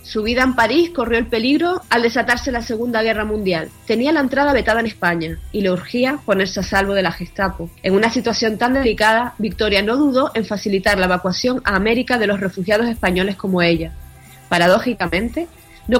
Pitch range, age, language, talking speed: 190-240 Hz, 30-49, Spanish, 190 wpm